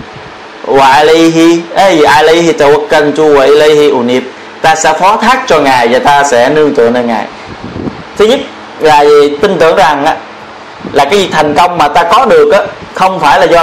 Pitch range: 145-200 Hz